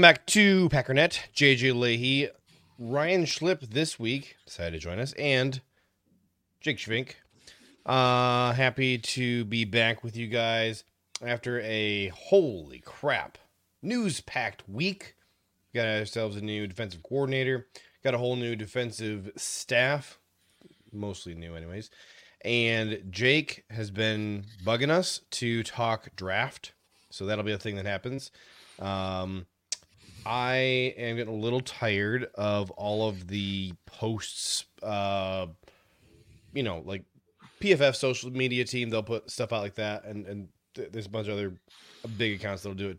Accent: American